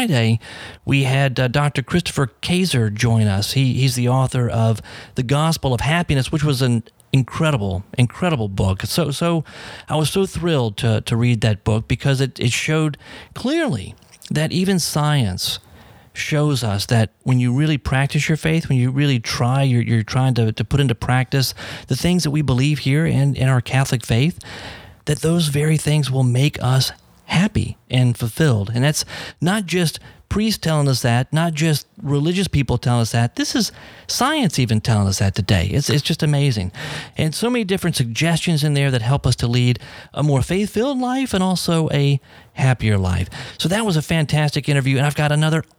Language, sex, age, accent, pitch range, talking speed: English, male, 40-59, American, 120-160 Hz, 190 wpm